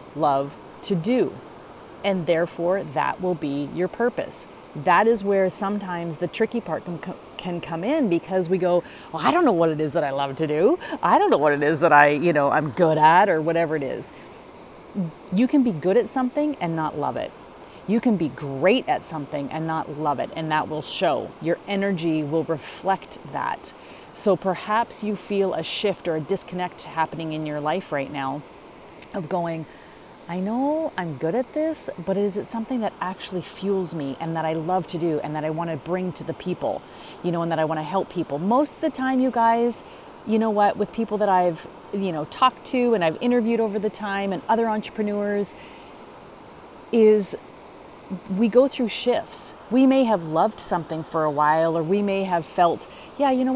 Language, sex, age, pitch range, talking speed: English, female, 30-49, 160-225 Hz, 205 wpm